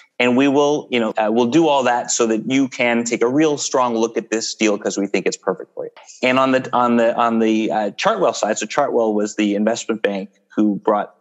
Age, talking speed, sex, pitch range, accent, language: 30-49, 250 wpm, male, 105-135 Hz, American, English